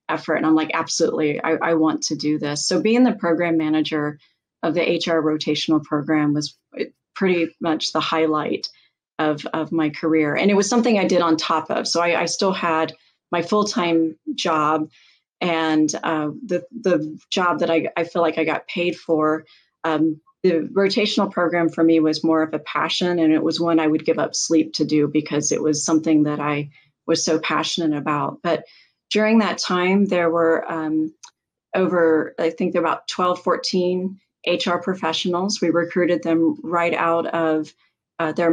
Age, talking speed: 30-49, 180 wpm